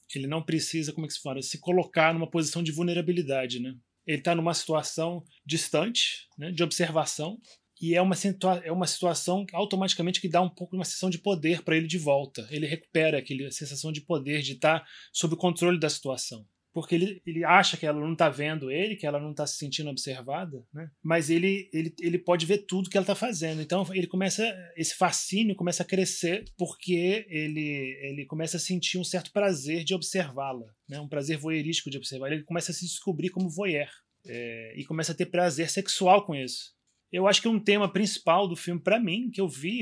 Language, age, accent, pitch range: Portuguese, 20-39, Brazilian, 150-185 Hz